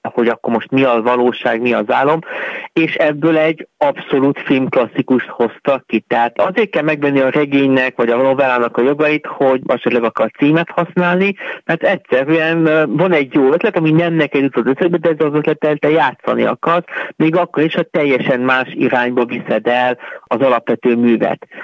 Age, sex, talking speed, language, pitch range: 50-69, male, 175 wpm, Hungarian, 130-180 Hz